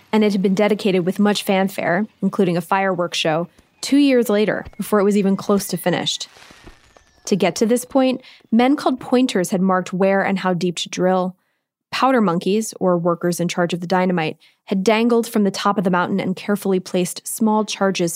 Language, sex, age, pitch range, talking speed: English, female, 20-39, 180-215 Hz, 200 wpm